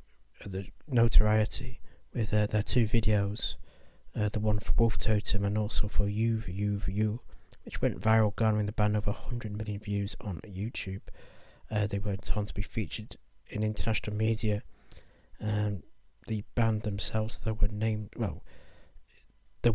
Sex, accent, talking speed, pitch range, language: male, British, 160 wpm, 105-115 Hz, English